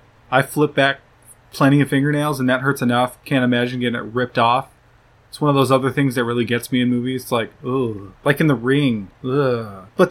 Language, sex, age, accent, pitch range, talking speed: English, male, 20-39, American, 125-150 Hz, 220 wpm